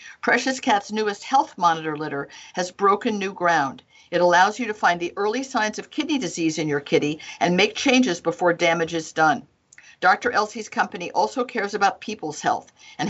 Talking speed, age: 185 wpm, 50-69